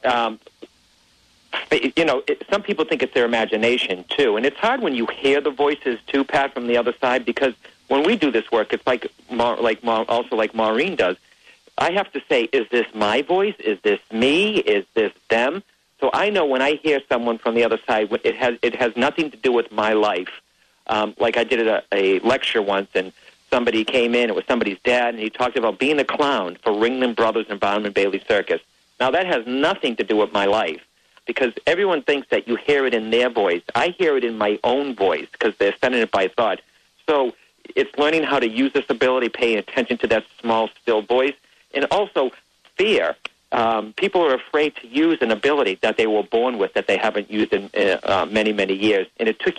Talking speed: 220 wpm